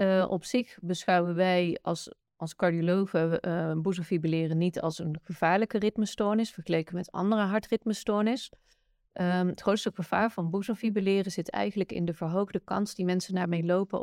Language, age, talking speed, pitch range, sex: Dutch, 30-49, 150 wpm, 175-200 Hz, female